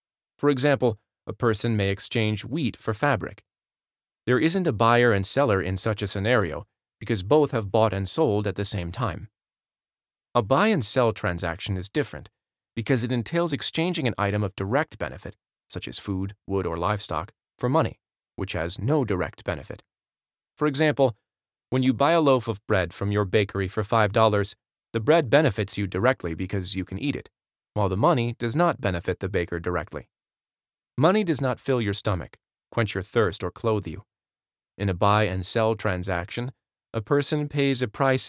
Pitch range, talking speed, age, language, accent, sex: 100-130 Hz, 170 wpm, 30-49, English, American, male